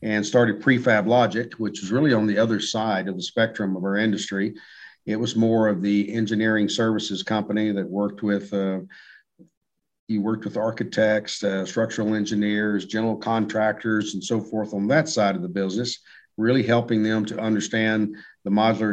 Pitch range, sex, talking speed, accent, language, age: 105-115 Hz, male, 170 wpm, American, English, 50-69